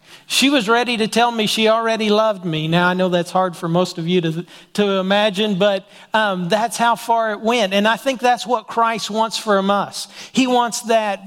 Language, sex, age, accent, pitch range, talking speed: English, male, 40-59, American, 180-215 Hz, 220 wpm